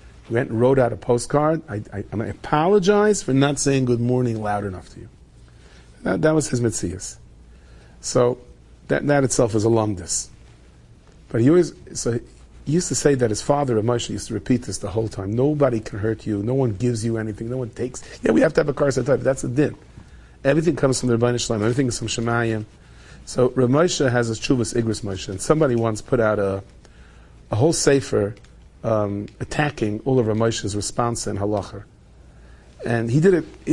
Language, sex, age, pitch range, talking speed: English, male, 40-59, 100-125 Hz, 200 wpm